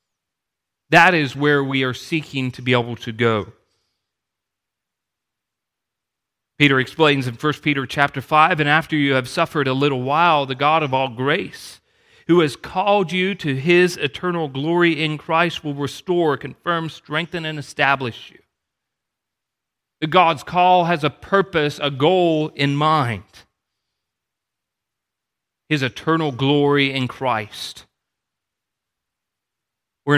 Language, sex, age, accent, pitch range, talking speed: English, male, 40-59, American, 130-155 Hz, 125 wpm